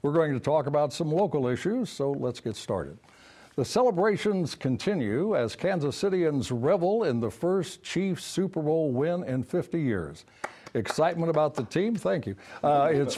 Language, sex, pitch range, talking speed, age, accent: English, male, 125-180 Hz, 170 wpm, 60-79, American